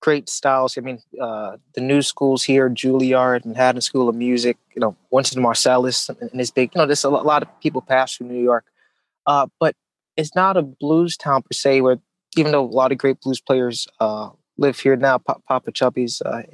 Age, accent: 20-39, American